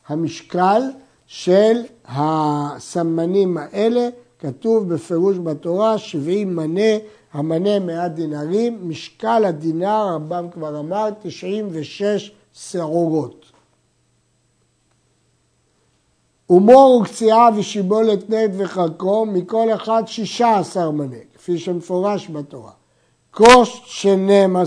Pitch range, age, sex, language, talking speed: 170-225 Hz, 60-79, male, Hebrew, 80 wpm